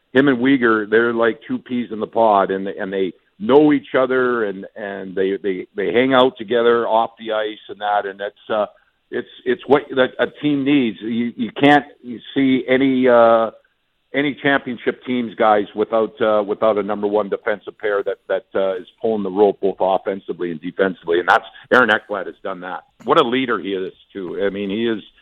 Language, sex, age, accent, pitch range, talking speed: English, male, 50-69, American, 105-125 Hz, 205 wpm